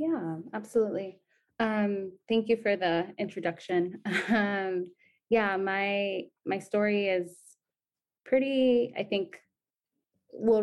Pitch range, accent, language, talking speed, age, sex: 160-185 Hz, American, English, 100 wpm, 20-39, female